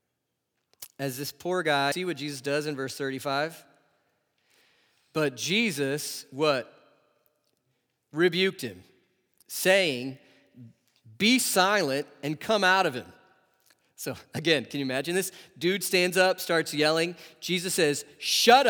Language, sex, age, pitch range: English, male, 40-59, 150-210 Hz